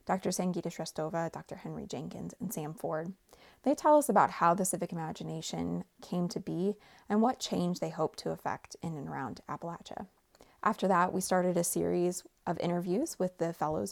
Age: 20-39